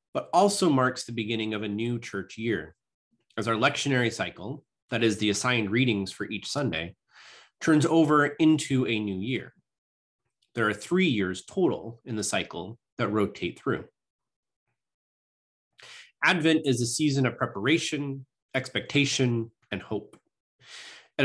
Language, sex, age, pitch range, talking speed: English, male, 30-49, 115-145 Hz, 140 wpm